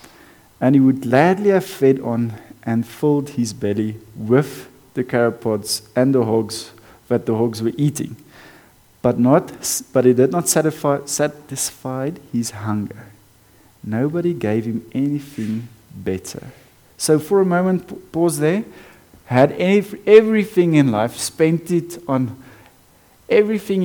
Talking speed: 130 wpm